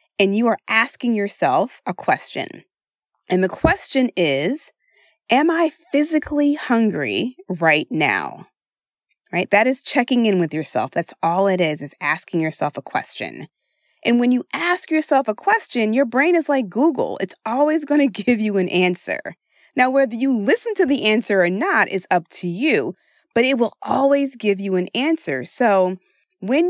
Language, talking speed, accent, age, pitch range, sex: English, 170 wpm, American, 30-49, 190-290 Hz, female